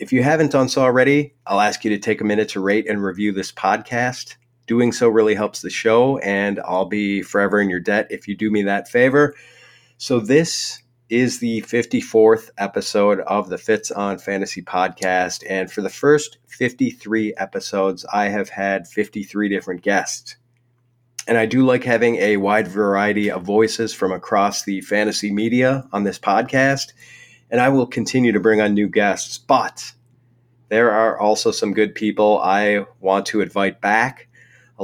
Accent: American